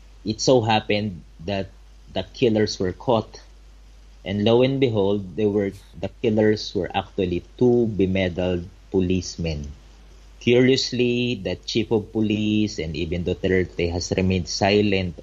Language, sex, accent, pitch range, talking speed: English, male, Filipino, 85-100 Hz, 125 wpm